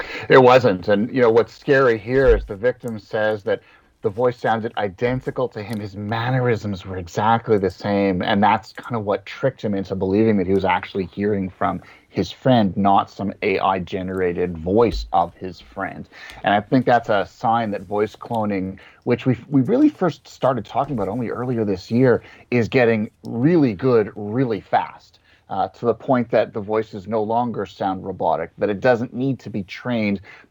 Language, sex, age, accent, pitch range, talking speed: English, male, 30-49, American, 95-115 Hz, 185 wpm